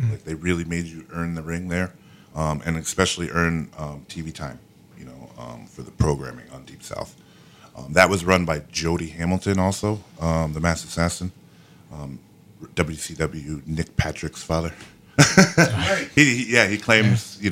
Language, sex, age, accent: English, male, 30-49, American